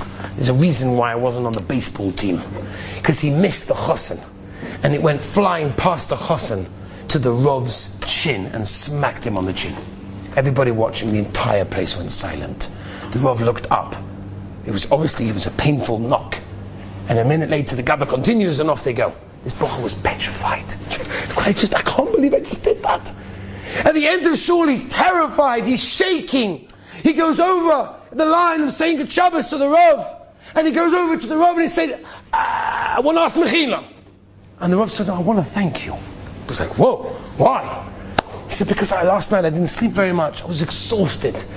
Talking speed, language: 200 wpm, English